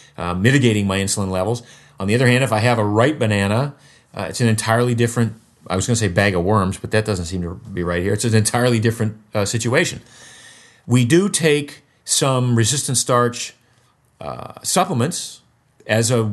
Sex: male